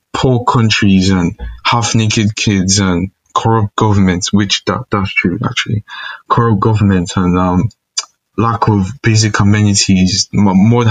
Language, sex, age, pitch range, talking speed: English, male, 20-39, 100-125 Hz, 125 wpm